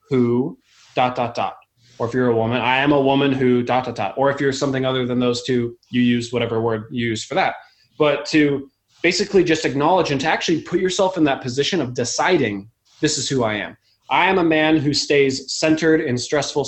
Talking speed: 225 wpm